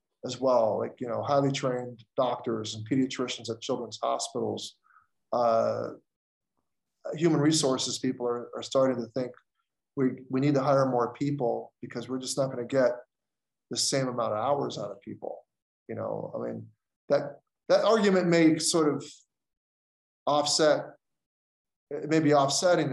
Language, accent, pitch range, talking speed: English, American, 120-145 Hz, 150 wpm